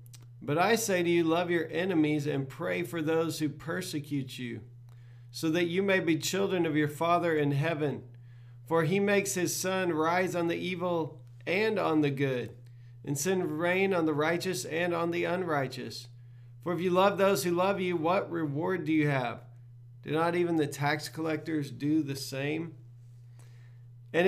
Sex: male